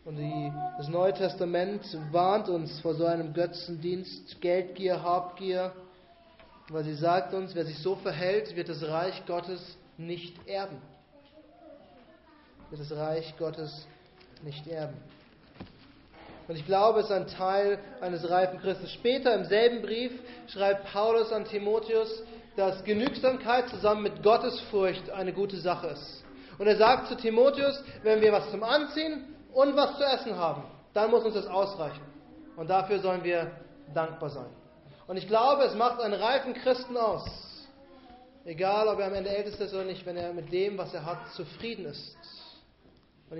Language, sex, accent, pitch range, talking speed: German, male, German, 175-225 Hz, 155 wpm